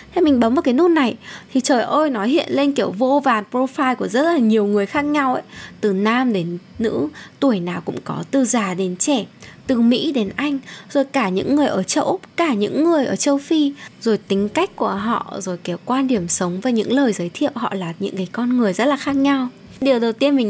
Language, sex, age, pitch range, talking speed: Vietnamese, female, 10-29, 200-275 Hz, 245 wpm